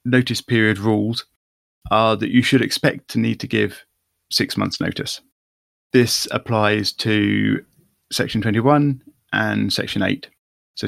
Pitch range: 90-115 Hz